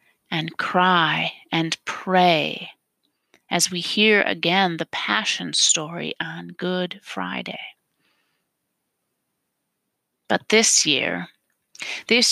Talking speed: 90 wpm